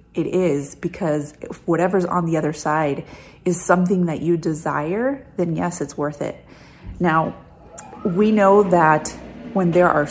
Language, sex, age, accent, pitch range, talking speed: English, female, 30-49, American, 155-195 Hz, 155 wpm